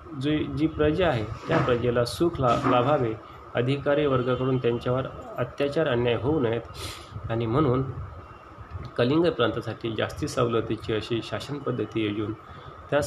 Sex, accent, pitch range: male, native, 120-150 Hz